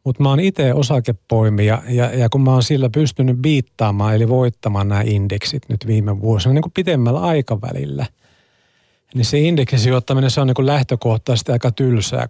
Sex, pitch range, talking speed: male, 110-140 Hz, 160 wpm